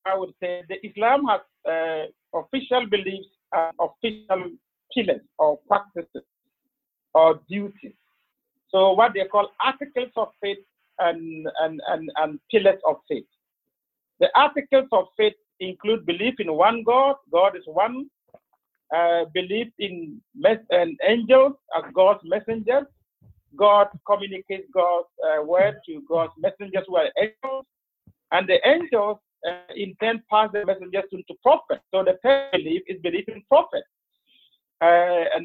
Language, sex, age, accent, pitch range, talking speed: English, male, 50-69, Nigerian, 185-255 Hz, 140 wpm